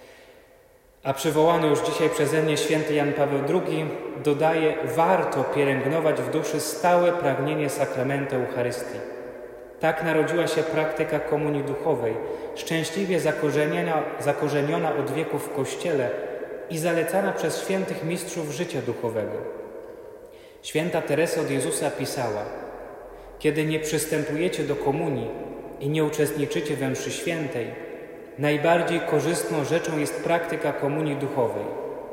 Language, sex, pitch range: Polish, male, 150-180 Hz